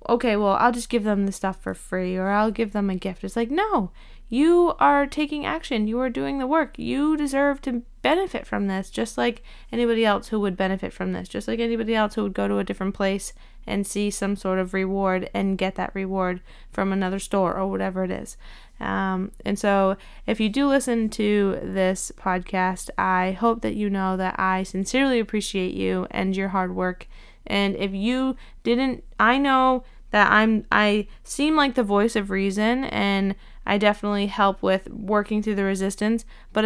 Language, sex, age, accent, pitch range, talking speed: English, female, 20-39, American, 190-230 Hz, 195 wpm